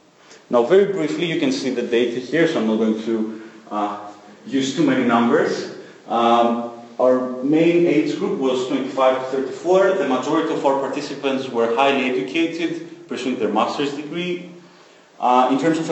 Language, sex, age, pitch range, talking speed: English, male, 30-49, 115-150 Hz, 165 wpm